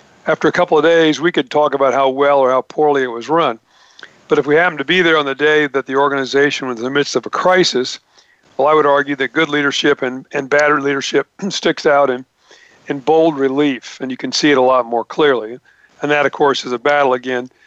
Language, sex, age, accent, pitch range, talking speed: English, male, 50-69, American, 135-155 Hz, 240 wpm